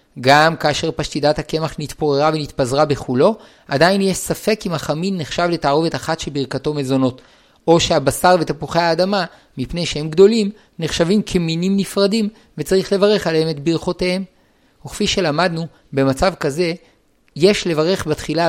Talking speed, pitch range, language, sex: 125 wpm, 150-185 Hz, Hebrew, male